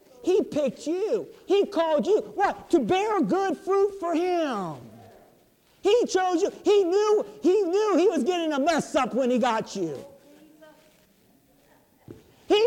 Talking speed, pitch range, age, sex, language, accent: 145 wpm, 270-365 Hz, 50-69, male, English, American